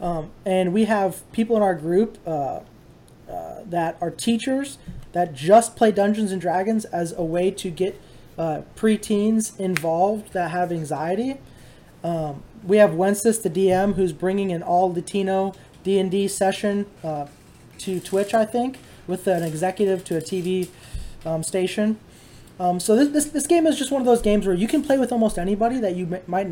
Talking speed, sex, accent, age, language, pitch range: 175 wpm, male, American, 20-39, English, 180-220 Hz